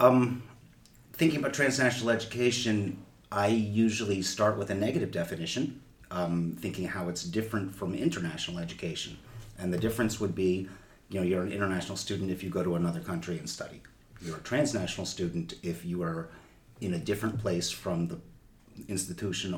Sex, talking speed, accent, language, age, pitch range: male, 160 wpm, American, English, 30-49, 90-110 Hz